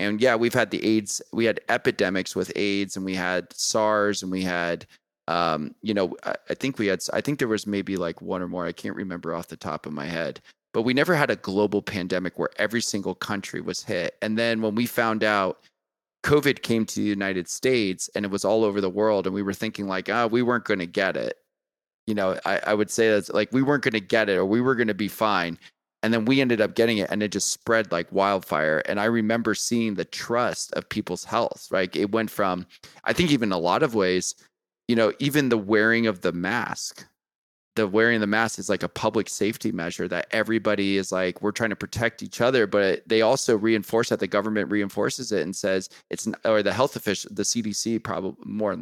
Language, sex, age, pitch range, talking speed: English, male, 20-39, 95-115 Hz, 230 wpm